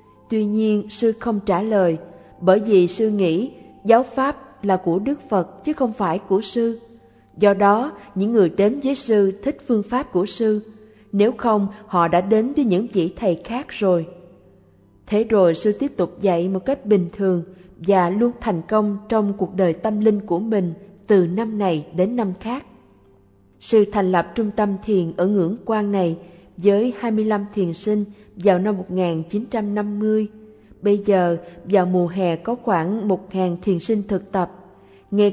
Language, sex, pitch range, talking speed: Vietnamese, female, 180-220 Hz, 170 wpm